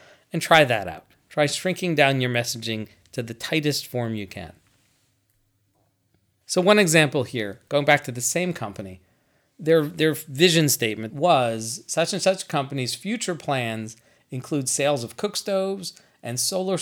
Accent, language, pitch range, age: American, English, 120-175 Hz, 40-59